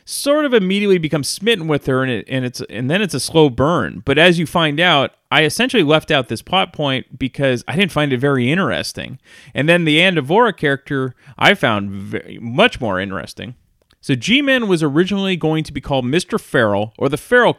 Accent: American